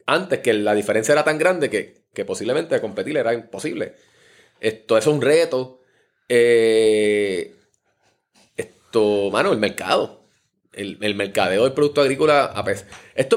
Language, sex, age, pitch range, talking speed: Spanish, male, 30-49, 115-170 Hz, 150 wpm